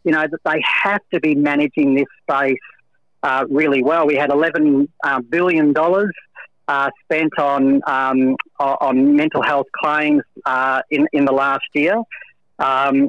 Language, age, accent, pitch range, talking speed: English, 40-59, Australian, 135-155 Hz, 145 wpm